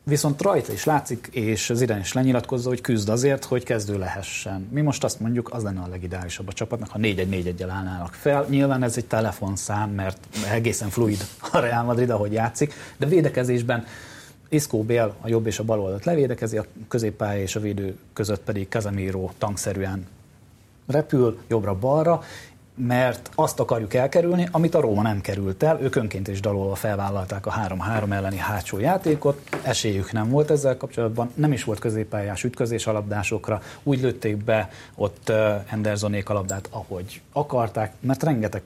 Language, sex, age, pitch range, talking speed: Hungarian, male, 30-49, 105-130 Hz, 165 wpm